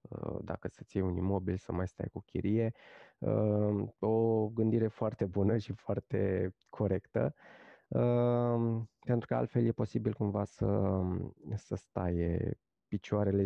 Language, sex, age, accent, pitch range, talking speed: Romanian, male, 20-39, native, 100-120 Hz, 120 wpm